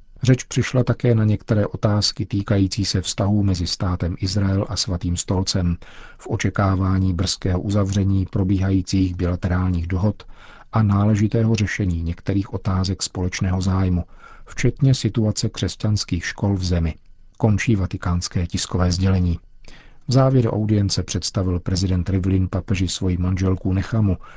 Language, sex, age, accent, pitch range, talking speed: Czech, male, 50-69, native, 95-110 Hz, 120 wpm